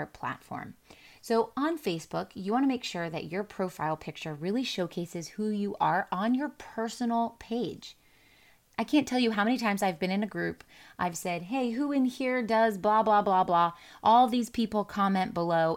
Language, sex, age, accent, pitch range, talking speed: English, female, 30-49, American, 175-230 Hz, 190 wpm